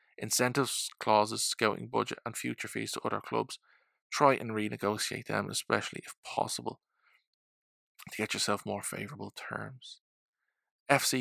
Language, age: English, 20-39